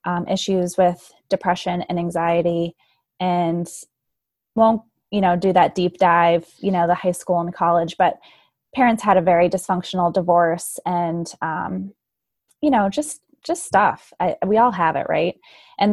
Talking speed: 155 wpm